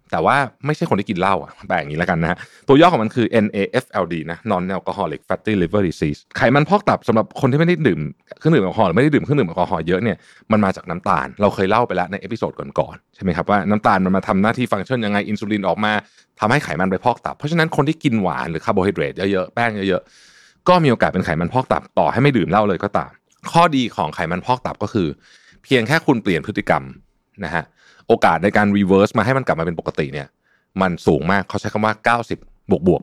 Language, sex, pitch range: Thai, male, 95-125 Hz